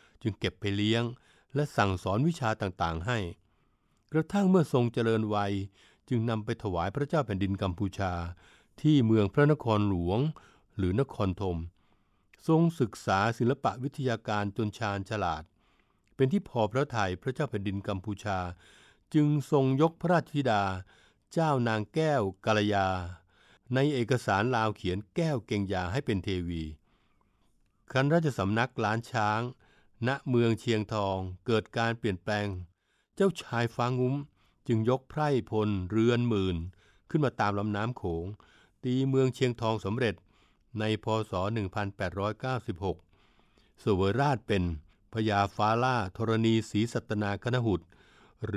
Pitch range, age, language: 100-125 Hz, 60-79, Thai